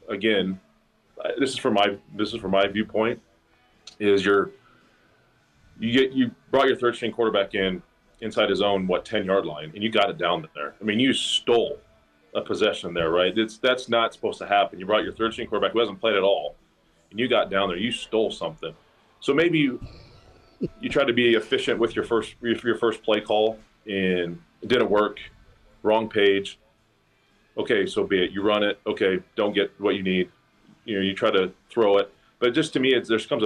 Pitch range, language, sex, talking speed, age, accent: 100-120 Hz, English, male, 205 wpm, 30-49, American